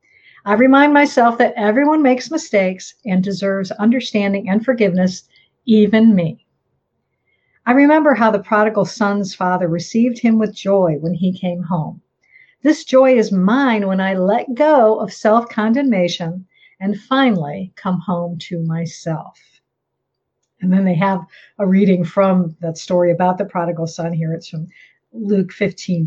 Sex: female